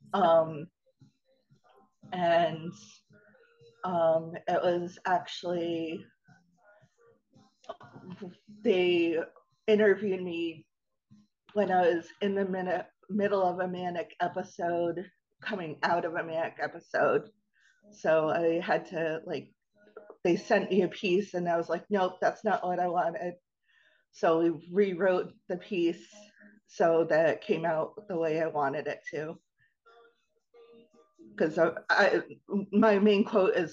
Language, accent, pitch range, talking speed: English, American, 165-200 Hz, 125 wpm